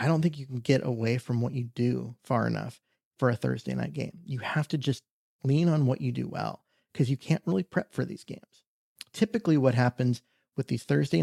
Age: 30-49